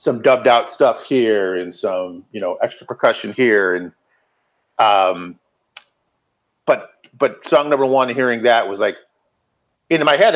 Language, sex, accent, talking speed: English, male, American, 150 wpm